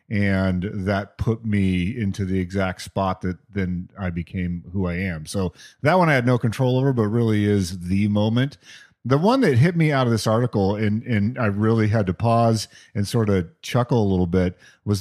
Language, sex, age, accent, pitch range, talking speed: English, male, 40-59, American, 105-140 Hz, 210 wpm